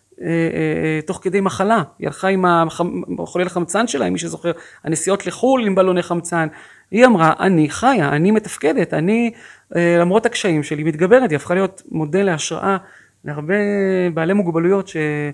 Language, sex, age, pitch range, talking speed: Hebrew, male, 30-49, 160-200 Hz, 150 wpm